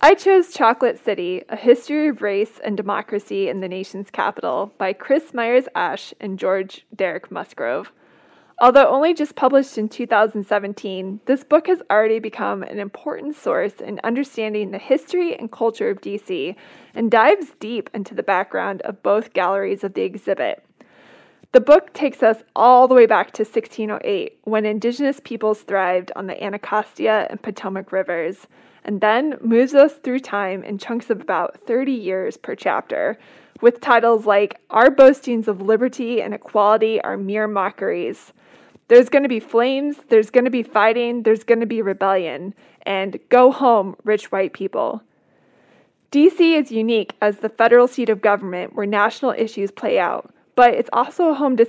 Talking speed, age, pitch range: 160 wpm, 20-39, 205-255 Hz